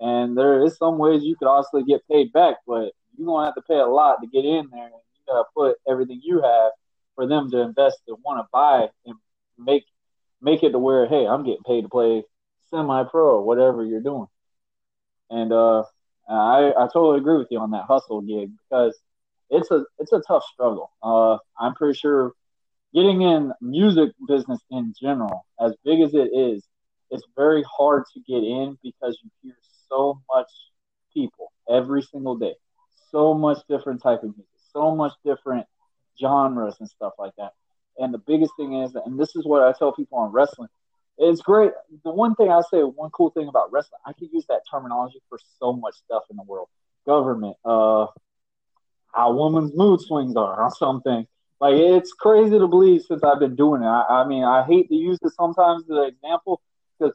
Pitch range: 125-165 Hz